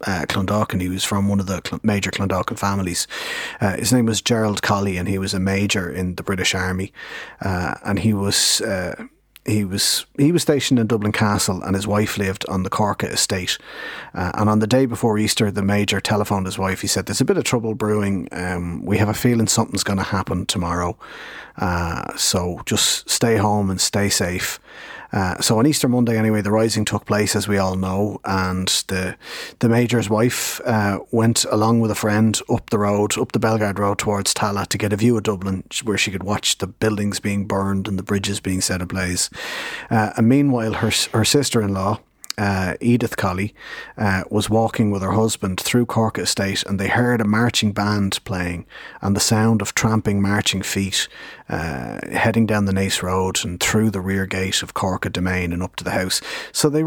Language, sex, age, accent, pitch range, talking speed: English, male, 30-49, Irish, 95-110 Hz, 205 wpm